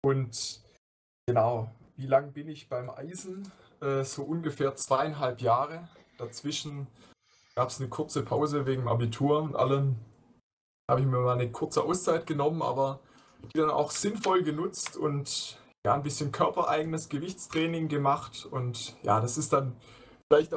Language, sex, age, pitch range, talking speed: German, male, 20-39, 125-150 Hz, 145 wpm